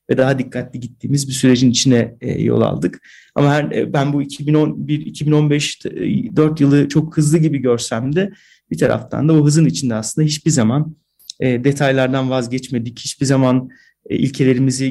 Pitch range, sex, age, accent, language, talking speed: 130-155 Hz, male, 40-59, native, Turkish, 135 wpm